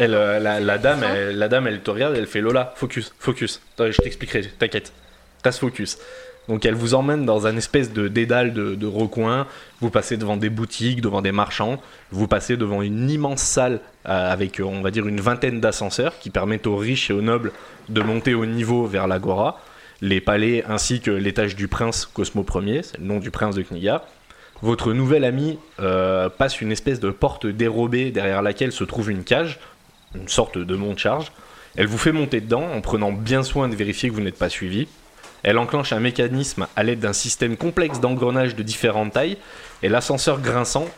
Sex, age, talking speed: male, 20-39, 200 wpm